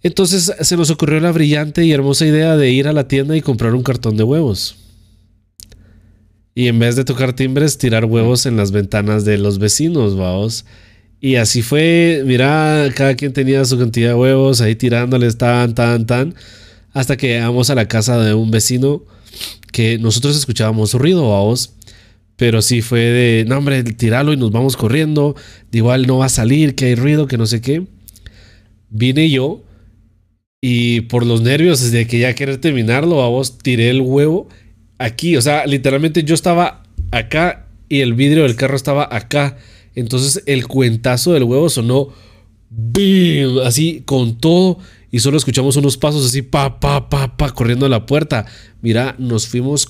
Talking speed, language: 175 wpm, Spanish